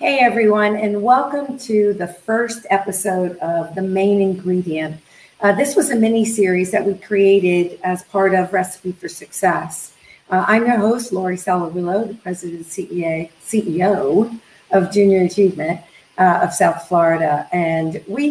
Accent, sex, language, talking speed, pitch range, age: American, female, English, 150 wpm, 170-210 Hz, 50-69